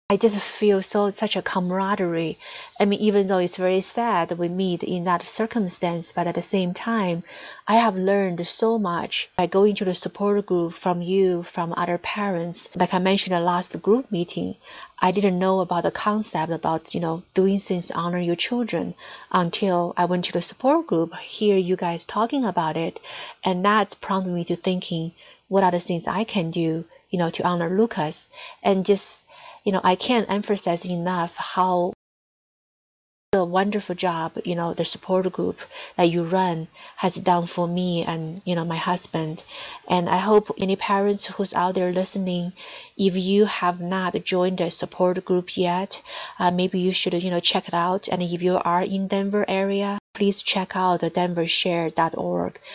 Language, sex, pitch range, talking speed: English, female, 175-200 Hz, 185 wpm